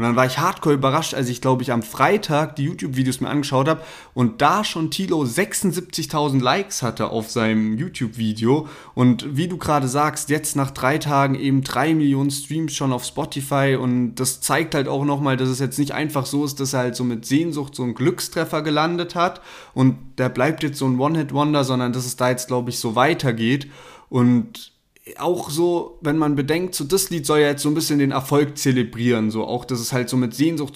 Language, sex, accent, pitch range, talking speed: German, male, German, 130-150 Hz, 215 wpm